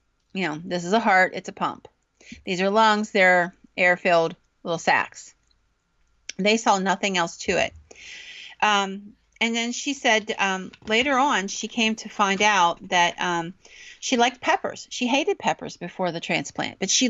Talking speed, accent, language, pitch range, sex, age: 170 wpm, American, English, 195-255 Hz, female, 40-59